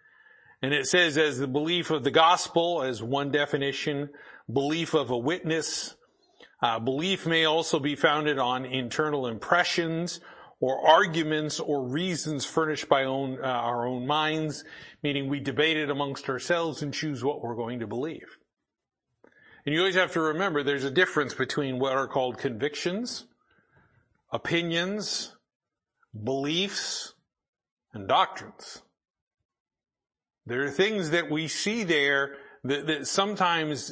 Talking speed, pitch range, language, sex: 135 wpm, 140-170 Hz, English, male